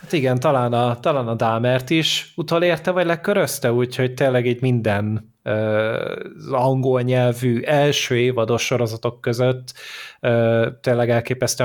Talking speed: 120 wpm